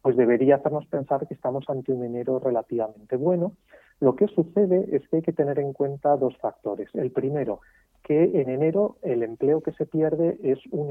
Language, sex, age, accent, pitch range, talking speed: Spanish, male, 40-59, Spanish, 110-150 Hz, 195 wpm